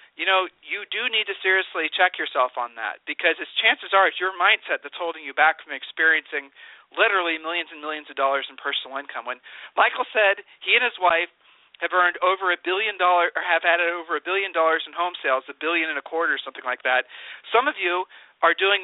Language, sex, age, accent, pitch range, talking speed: English, male, 40-59, American, 150-185 Hz, 215 wpm